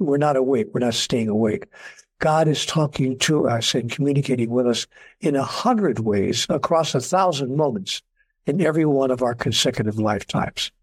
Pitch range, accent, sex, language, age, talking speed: 130-175 Hz, American, male, English, 60-79, 170 wpm